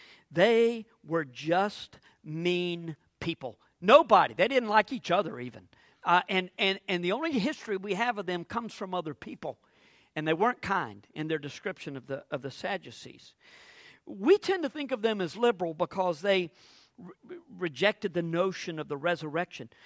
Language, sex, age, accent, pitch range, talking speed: English, male, 50-69, American, 170-235 Hz, 165 wpm